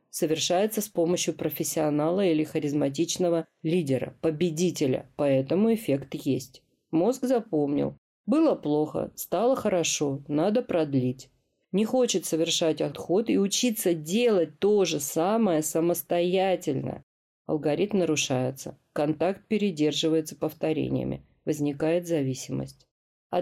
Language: Russian